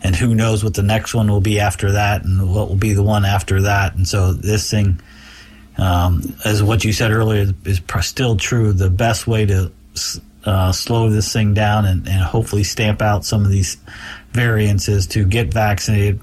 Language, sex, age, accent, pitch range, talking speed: English, male, 40-59, American, 95-110 Hz, 195 wpm